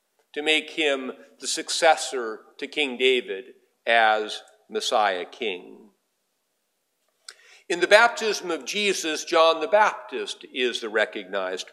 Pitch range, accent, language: 135-225 Hz, American, English